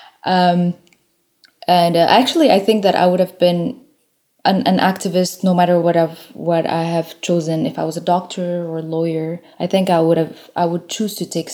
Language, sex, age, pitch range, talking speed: French, female, 20-39, 170-220 Hz, 205 wpm